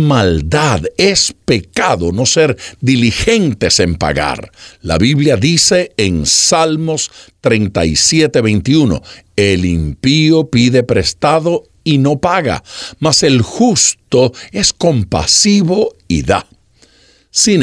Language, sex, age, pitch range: Spanish, male, 60-79, 100-160 Hz